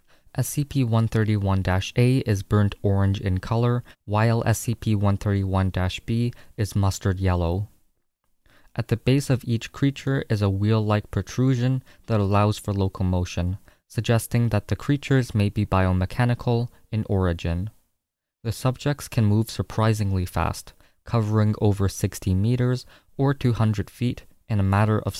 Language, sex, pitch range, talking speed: English, male, 95-120 Hz, 120 wpm